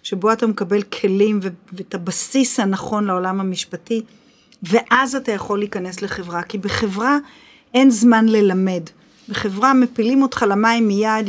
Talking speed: 135 wpm